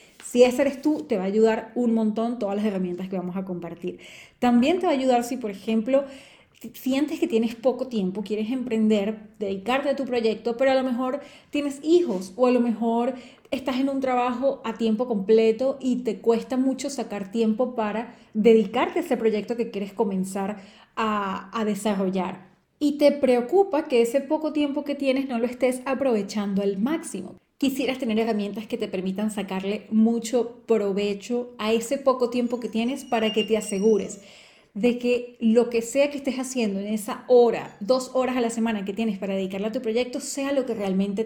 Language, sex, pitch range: Spanish, female, 210-260 Hz